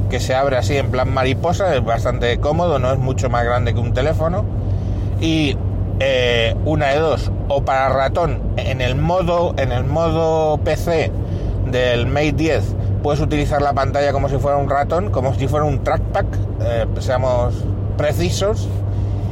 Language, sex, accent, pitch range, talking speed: Spanish, male, Spanish, 100-135 Hz, 165 wpm